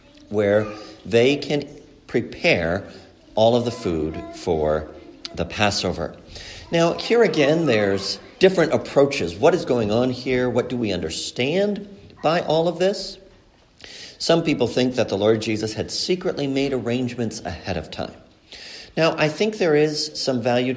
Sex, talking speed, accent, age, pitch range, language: male, 145 wpm, American, 50-69, 95-150 Hz, English